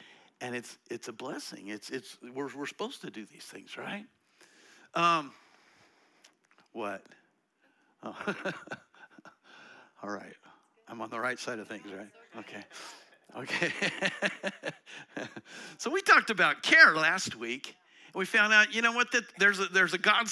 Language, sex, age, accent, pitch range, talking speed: English, male, 60-79, American, 135-200 Hz, 150 wpm